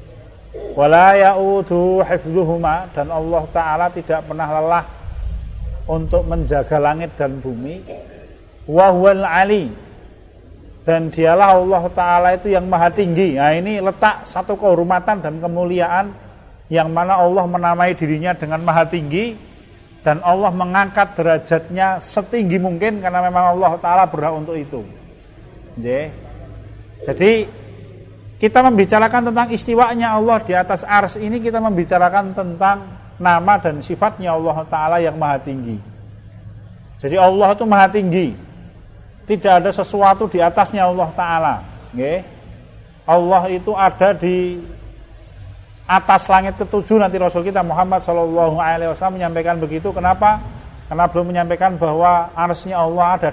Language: Indonesian